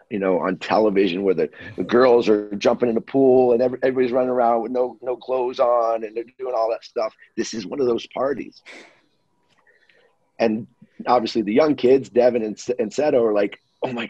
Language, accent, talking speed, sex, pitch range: English, American, 210 wpm, male, 110-130 Hz